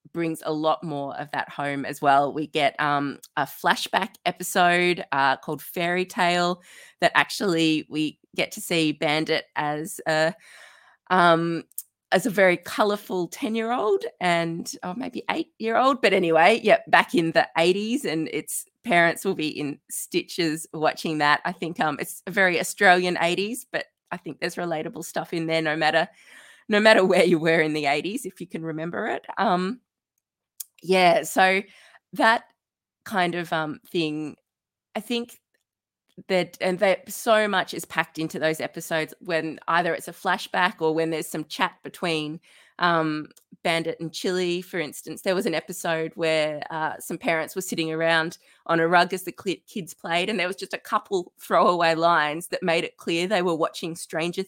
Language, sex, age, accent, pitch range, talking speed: English, female, 20-39, Australian, 160-190 Hz, 175 wpm